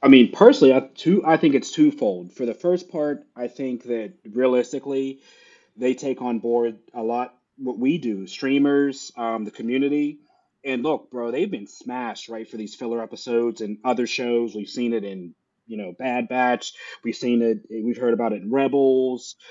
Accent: American